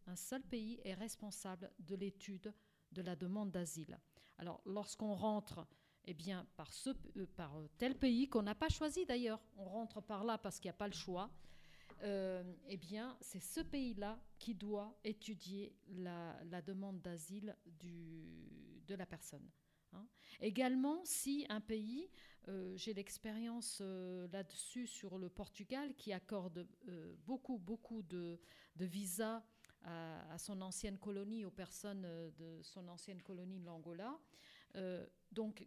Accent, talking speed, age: French, 150 wpm, 50-69